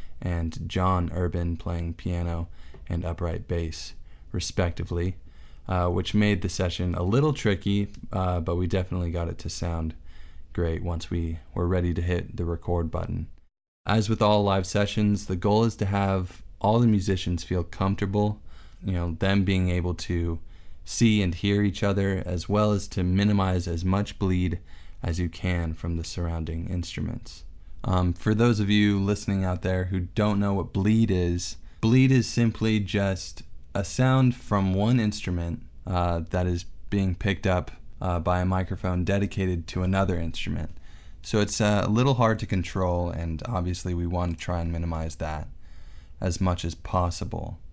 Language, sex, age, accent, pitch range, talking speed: English, male, 20-39, American, 85-100 Hz, 170 wpm